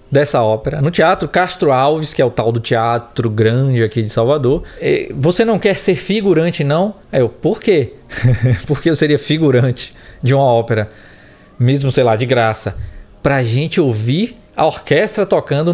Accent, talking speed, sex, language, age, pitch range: Brazilian, 170 wpm, male, Portuguese, 20-39, 120-175 Hz